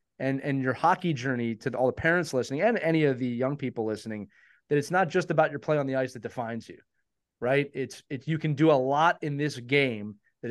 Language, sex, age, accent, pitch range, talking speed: English, male, 30-49, American, 130-175 Hz, 245 wpm